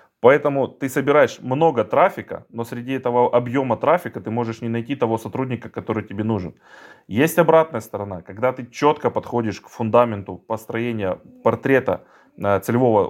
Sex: male